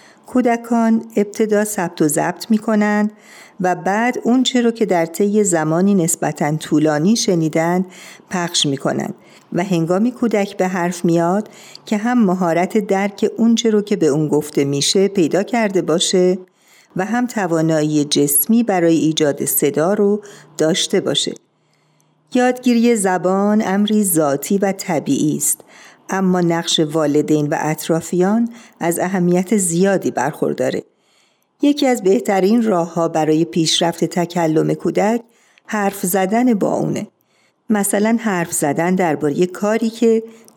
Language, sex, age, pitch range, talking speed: Persian, female, 50-69, 170-215 Hz, 125 wpm